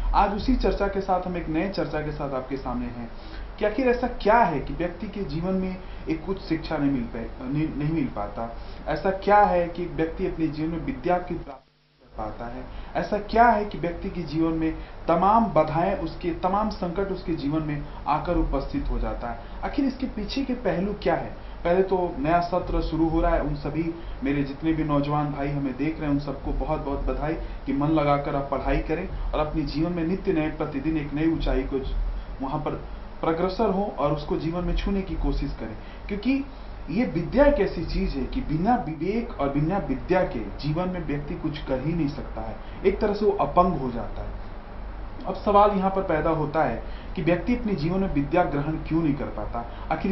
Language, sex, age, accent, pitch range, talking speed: Hindi, male, 30-49, native, 135-185 Hz, 210 wpm